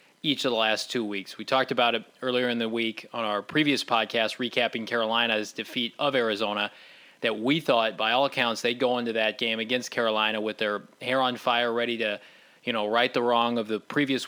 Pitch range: 115-130 Hz